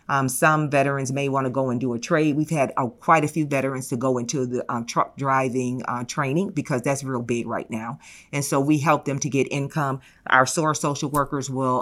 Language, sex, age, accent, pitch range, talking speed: English, female, 40-59, American, 130-150 Hz, 230 wpm